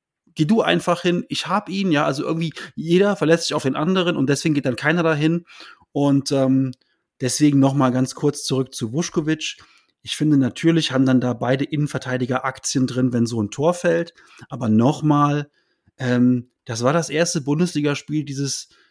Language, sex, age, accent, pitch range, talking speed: German, male, 30-49, German, 130-165 Hz, 175 wpm